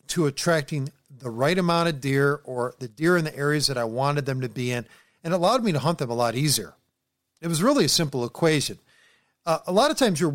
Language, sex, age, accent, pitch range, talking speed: English, male, 40-59, American, 140-185 Hz, 240 wpm